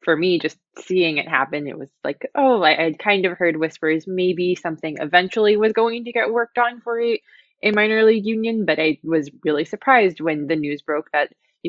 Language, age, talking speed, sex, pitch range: English, 20-39, 215 wpm, female, 145-180 Hz